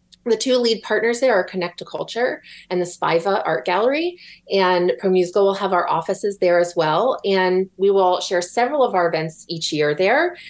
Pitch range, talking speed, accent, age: 190-255 Hz, 200 wpm, American, 30-49